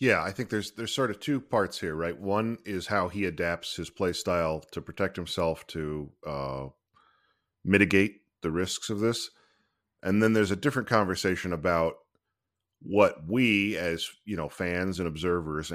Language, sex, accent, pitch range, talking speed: English, male, American, 85-105 Hz, 170 wpm